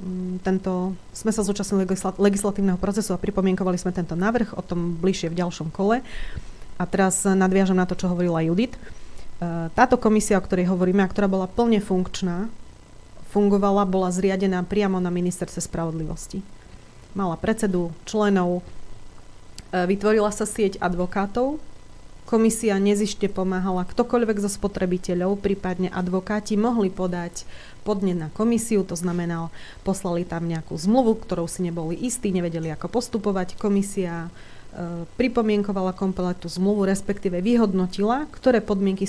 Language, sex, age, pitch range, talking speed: Slovak, female, 30-49, 175-205 Hz, 125 wpm